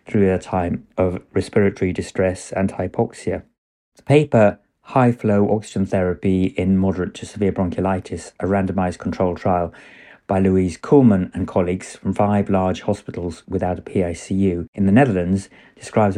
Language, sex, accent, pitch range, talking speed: English, male, British, 90-105 Hz, 145 wpm